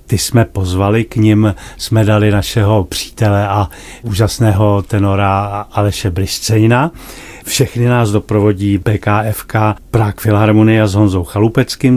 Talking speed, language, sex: 115 wpm, Czech, male